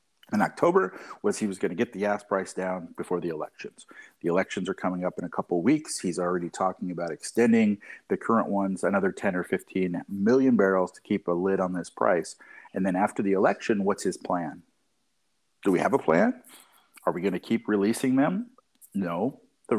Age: 50-69